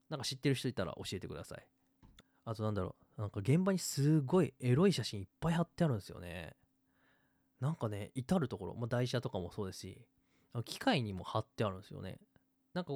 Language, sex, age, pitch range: Japanese, male, 20-39, 105-150 Hz